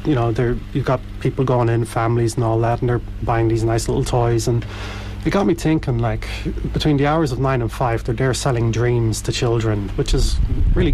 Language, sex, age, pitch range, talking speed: English, male, 30-49, 100-135 Hz, 225 wpm